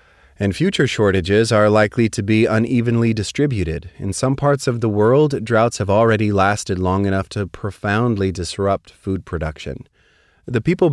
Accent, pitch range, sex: American, 90-115 Hz, male